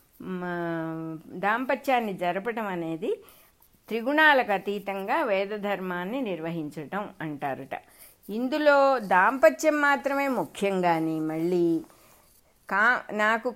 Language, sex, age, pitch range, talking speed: English, female, 60-79, 185-260 Hz, 60 wpm